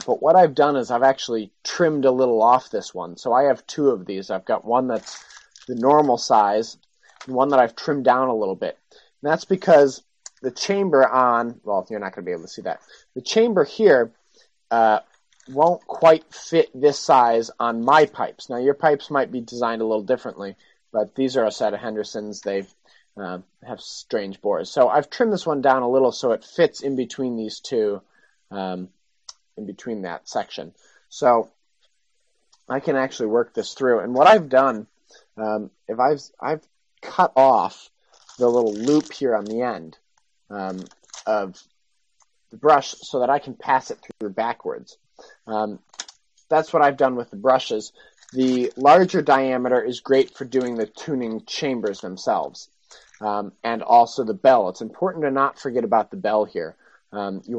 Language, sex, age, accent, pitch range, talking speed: English, male, 30-49, American, 110-140 Hz, 185 wpm